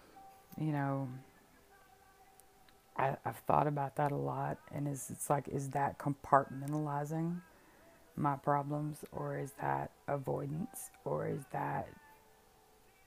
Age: 30-49